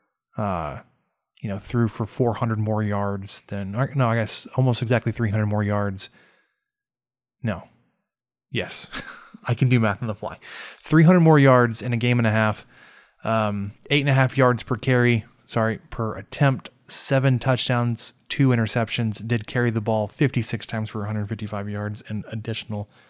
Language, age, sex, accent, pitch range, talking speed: English, 20-39, male, American, 110-130 Hz, 160 wpm